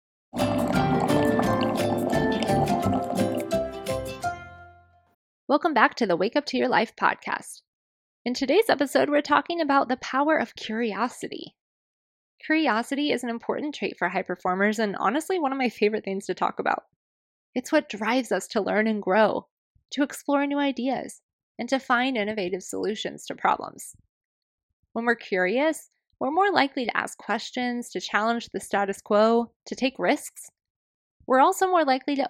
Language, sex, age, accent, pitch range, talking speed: English, female, 20-39, American, 200-280 Hz, 145 wpm